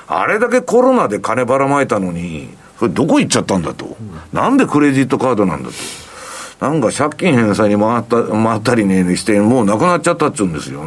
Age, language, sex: 50-69, Japanese, male